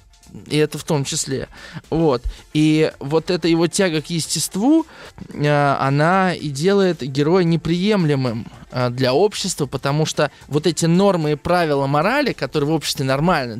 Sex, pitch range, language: male, 135-185 Hz, Russian